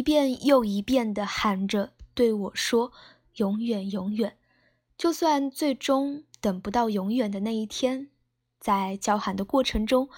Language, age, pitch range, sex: Chinese, 10-29, 200-250 Hz, female